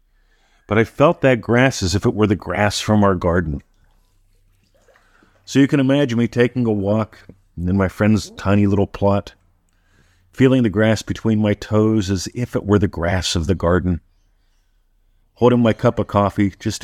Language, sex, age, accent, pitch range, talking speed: English, male, 50-69, American, 90-115 Hz, 175 wpm